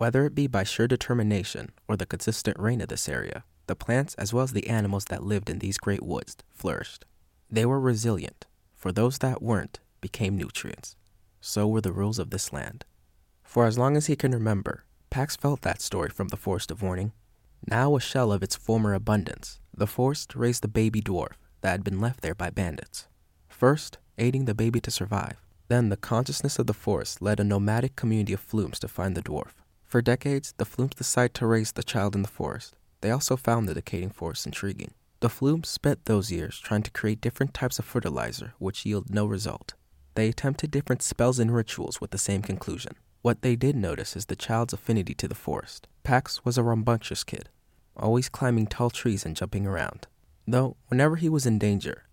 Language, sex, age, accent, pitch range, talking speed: English, male, 20-39, American, 100-120 Hz, 200 wpm